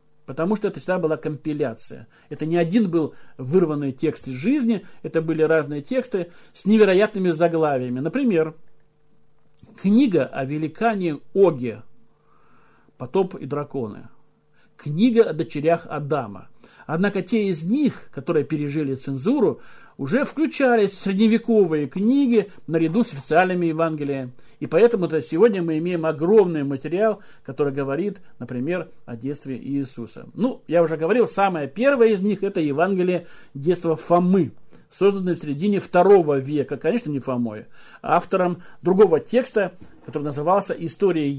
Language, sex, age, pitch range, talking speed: Russian, male, 50-69, 150-195 Hz, 130 wpm